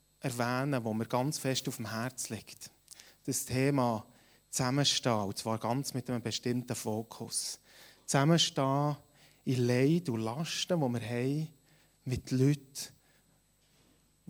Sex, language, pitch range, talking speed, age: male, German, 120-145 Hz, 120 wpm, 30-49